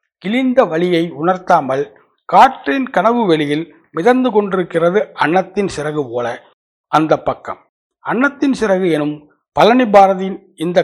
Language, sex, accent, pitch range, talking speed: English, male, Indian, 160-200 Hz, 100 wpm